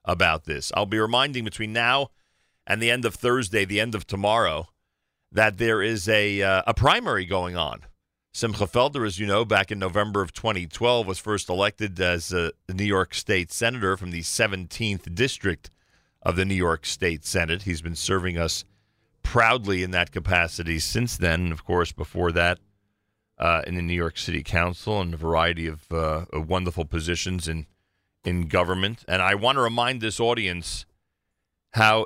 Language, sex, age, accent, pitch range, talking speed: English, male, 40-59, American, 90-115 Hz, 175 wpm